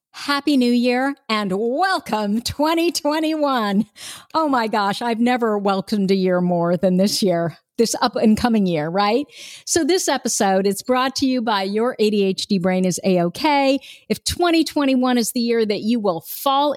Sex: female